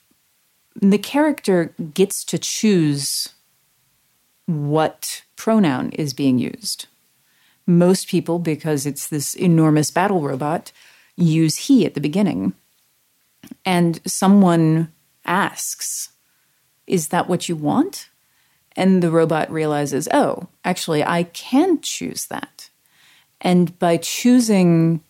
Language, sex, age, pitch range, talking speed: English, female, 30-49, 155-200 Hz, 105 wpm